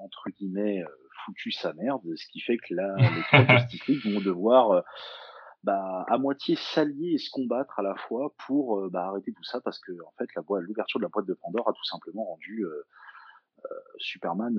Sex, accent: male, French